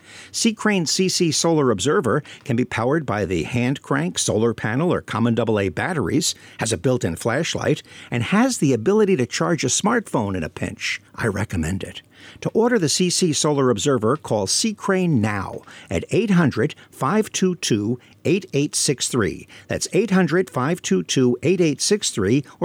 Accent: American